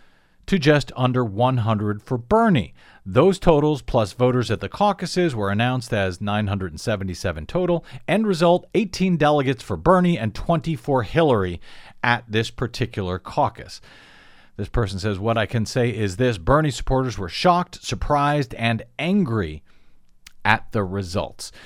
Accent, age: American, 50-69